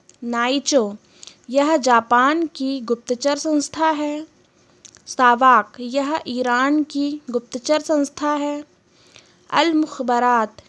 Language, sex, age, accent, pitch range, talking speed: Hindi, female, 20-39, native, 235-290 Hz, 90 wpm